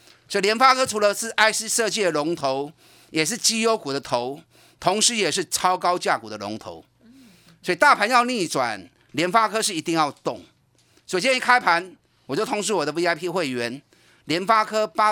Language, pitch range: Chinese, 145-215 Hz